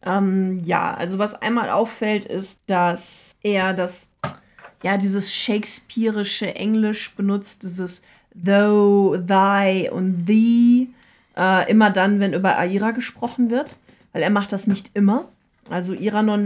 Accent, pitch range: German, 190-225 Hz